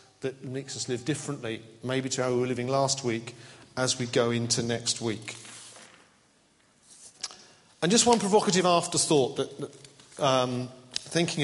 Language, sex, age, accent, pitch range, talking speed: English, male, 40-59, British, 125-155 Hz, 140 wpm